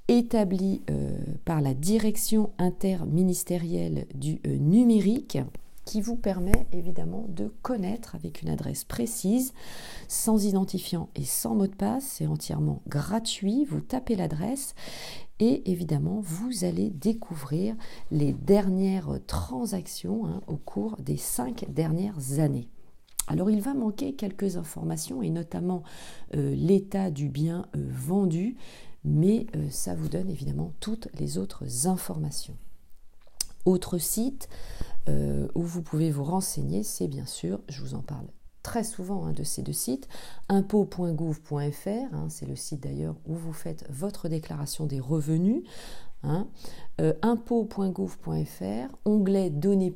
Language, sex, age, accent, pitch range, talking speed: French, female, 40-59, French, 150-210 Hz, 130 wpm